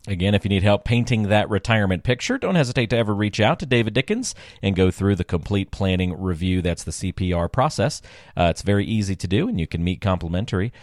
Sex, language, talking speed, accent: male, English, 220 wpm, American